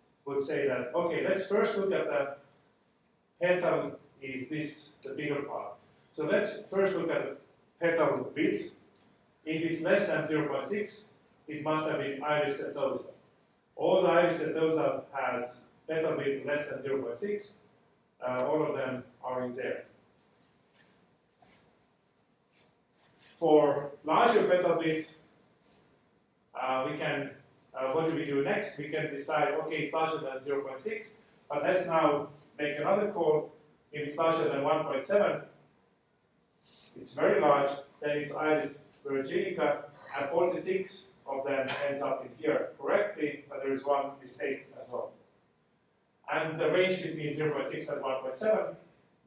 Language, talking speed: English, 140 wpm